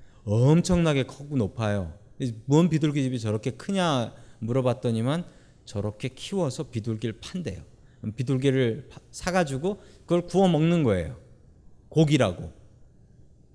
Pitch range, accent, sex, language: 120-180 Hz, native, male, Korean